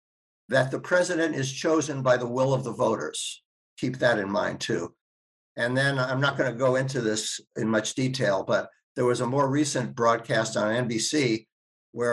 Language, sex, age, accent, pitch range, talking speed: English, male, 60-79, American, 120-155 Hz, 185 wpm